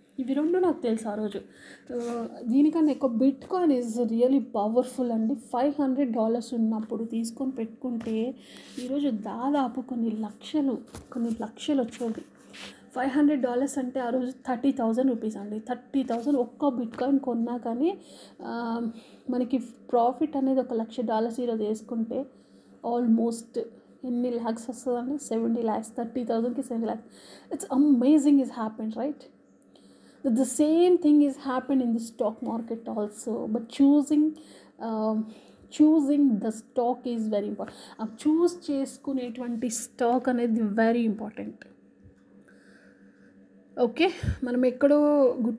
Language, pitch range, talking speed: Telugu, 225-265 Hz, 120 wpm